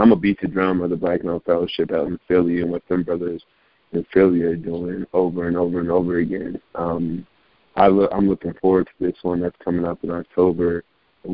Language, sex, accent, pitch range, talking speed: English, male, American, 85-95 Hz, 220 wpm